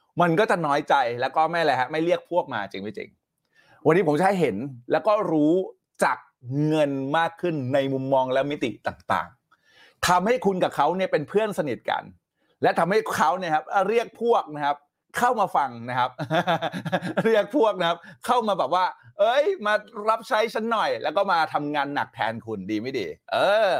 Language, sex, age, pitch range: Thai, male, 30-49, 130-185 Hz